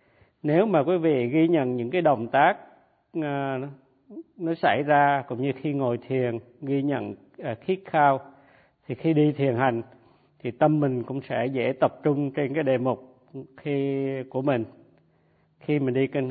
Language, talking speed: Vietnamese, 175 wpm